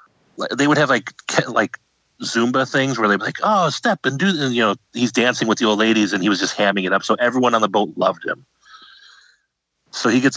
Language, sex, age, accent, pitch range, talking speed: English, male, 30-49, American, 100-120 Hz, 230 wpm